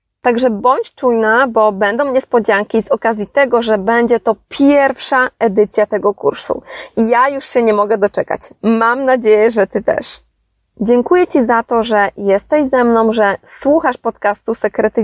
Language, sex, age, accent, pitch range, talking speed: Polish, female, 20-39, native, 215-265 Hz, 155 wpm